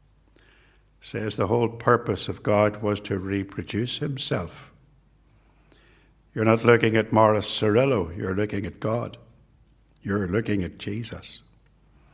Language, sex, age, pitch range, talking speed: English, male, 60-79, 95-115 Hz, 120 wpm